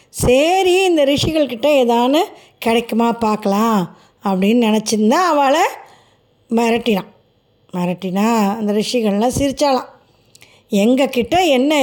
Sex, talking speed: female, 85 wpm